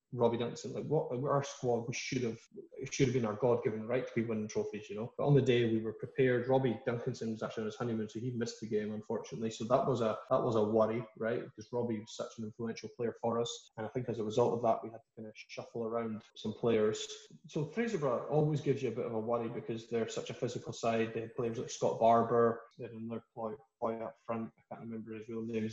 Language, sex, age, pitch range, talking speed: English, male, 20-39, 115-130 Hz, 265 wpm